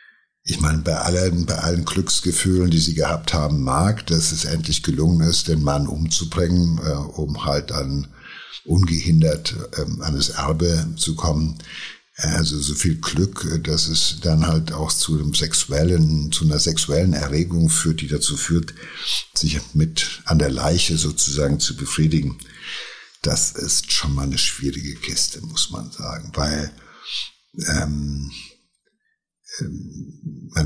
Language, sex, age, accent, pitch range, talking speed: German, male, 60-79, German, 75-85 Hz, 145 wpm